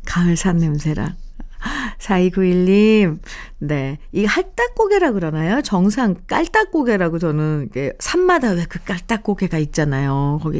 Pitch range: 170-240 Hz